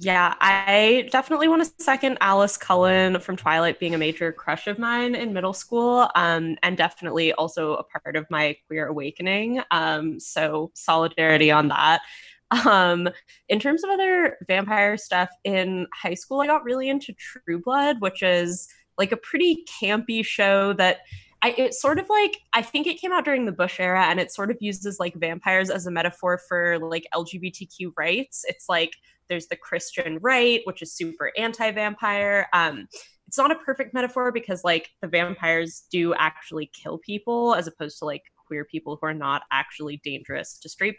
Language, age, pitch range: English, 10-29, 165-230 Hz